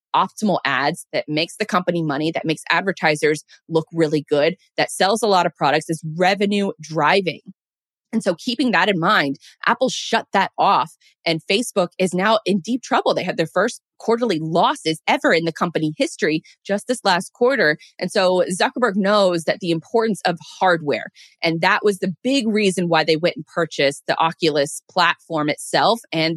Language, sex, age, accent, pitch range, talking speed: English, female, 20-39, American, 160-215 Hz, 180 wpm